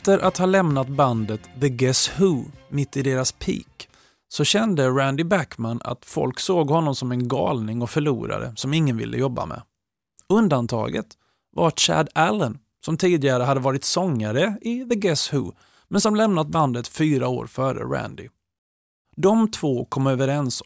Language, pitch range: Swedish, 125-175 Hz